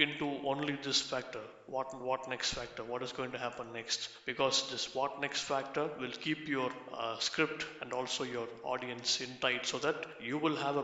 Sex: male